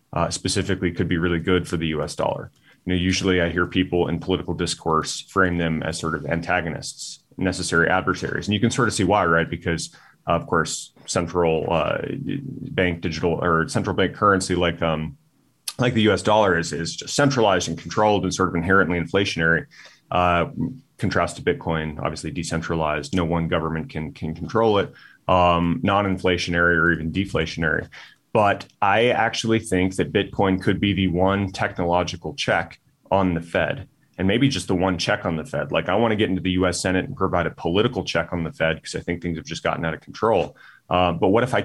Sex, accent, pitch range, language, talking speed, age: male, American, 85-95 Hz, English, 195 wpm, 30-49